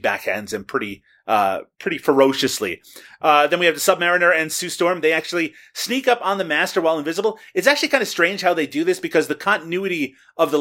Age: 30-49